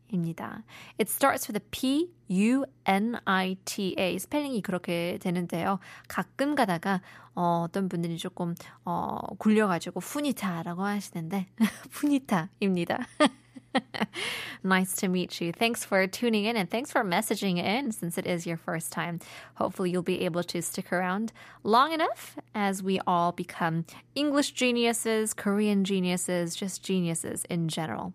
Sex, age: female, 20-39